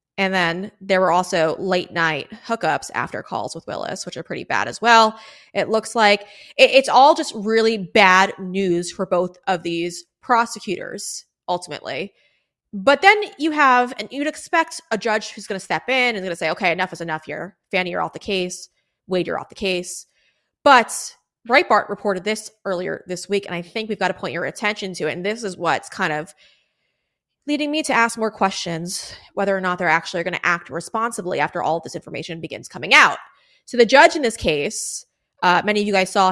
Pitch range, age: 180-230 Hz, 20-39